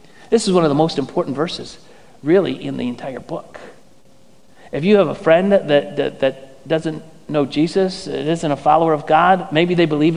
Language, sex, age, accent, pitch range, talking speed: English, male, 40-59, American, 165-200 Hz, 190 wpm